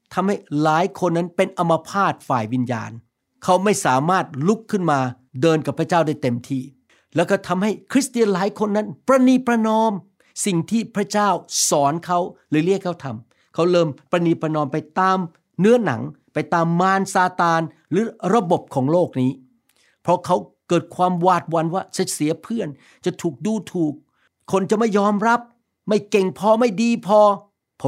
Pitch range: 145-190 Hz